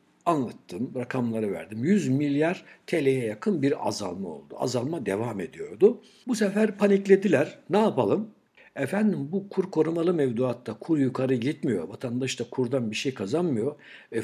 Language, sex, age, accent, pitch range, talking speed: Turkish, male, 60-79, native, 125-185 Hz, 140 wpm